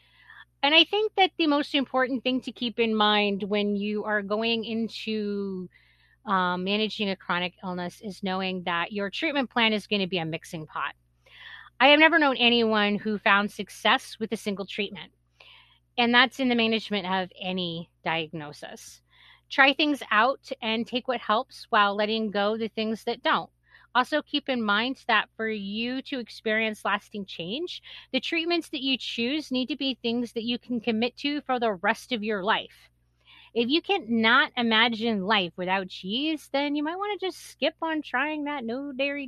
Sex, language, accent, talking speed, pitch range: female, English, American, 185 wpm, 185-255 Hz